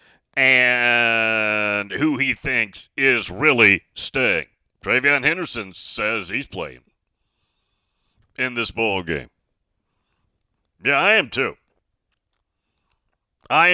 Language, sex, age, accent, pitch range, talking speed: English, male, 40-59, American, 115-150 Hz, 85 wpm